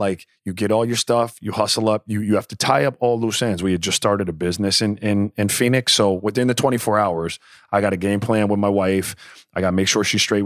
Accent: American